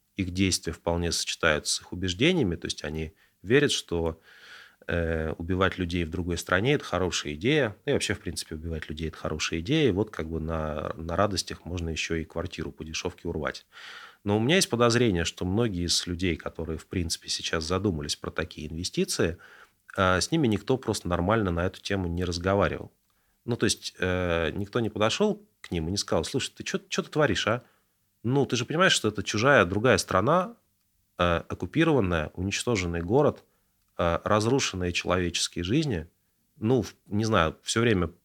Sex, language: male, Russian